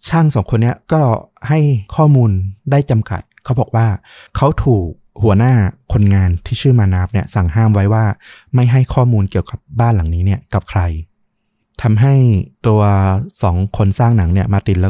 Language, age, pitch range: Thai, 20-39, 95-115 Hz